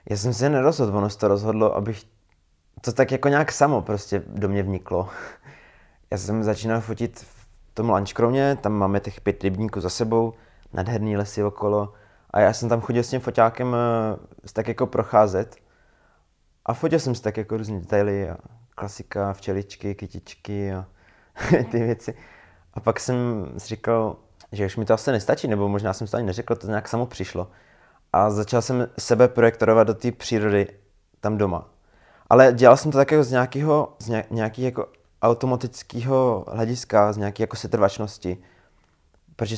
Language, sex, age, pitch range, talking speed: Czech, male, 20-39, 100-115 Hz, 165 wpm